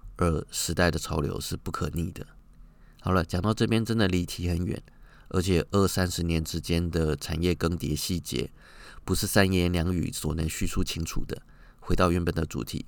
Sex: male